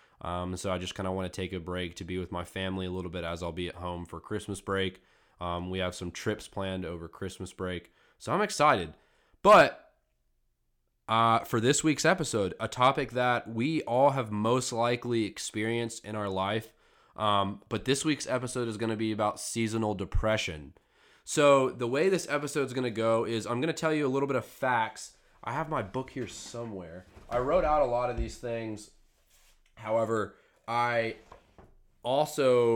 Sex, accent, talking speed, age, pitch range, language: male, American, 195 wpm, 20-39, 90-115 Hz, English